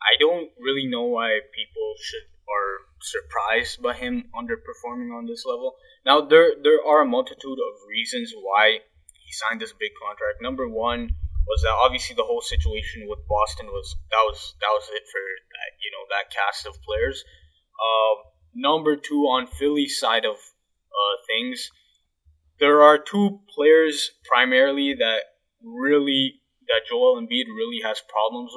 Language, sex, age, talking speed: English, male, 20-39, 160 wpm